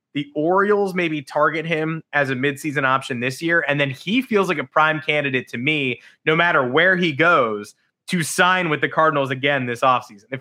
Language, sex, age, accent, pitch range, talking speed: English, male, 20-39, American, 125-155 Hz, 200 wpm